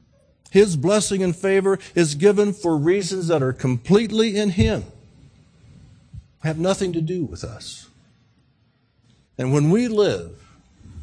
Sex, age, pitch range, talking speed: male, 60-79, 110-175 Hz, 125 wpm